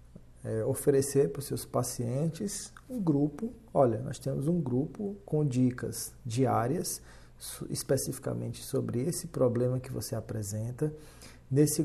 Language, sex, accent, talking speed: Portuguese, male, Brazilian, 125 wpm